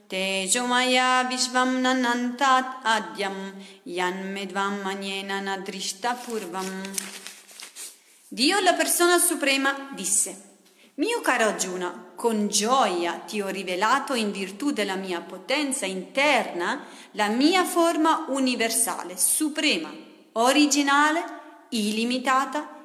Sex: female